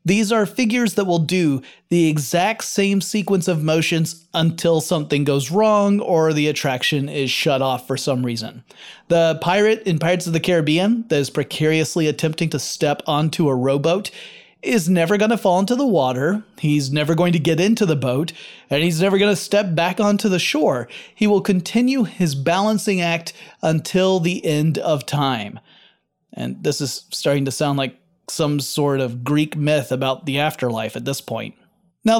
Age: 30-49